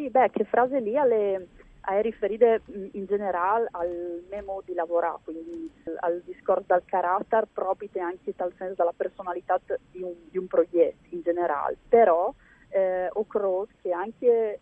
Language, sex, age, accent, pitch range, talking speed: Italian, female, 30-49, native, 175-230 Hz, 150 wpm